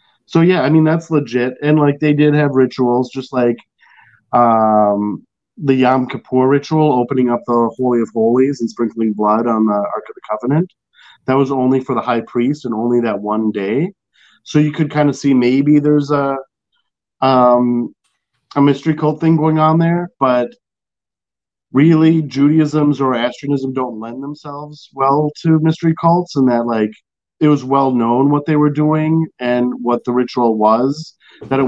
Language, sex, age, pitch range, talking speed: English, male, 30-49, 120-150 Hz, 175 wpm